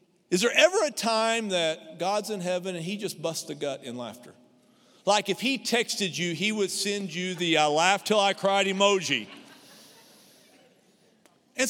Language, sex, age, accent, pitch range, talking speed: English, male, 50-69, American, 155-220 Hz, 175 wpm